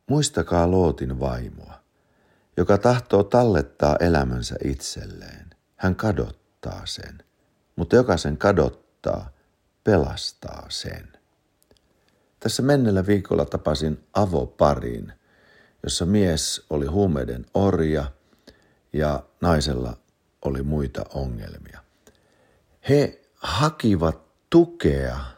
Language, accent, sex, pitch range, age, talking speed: Finnish, native, male, 75-105 Hz, 60-79, 85 wpm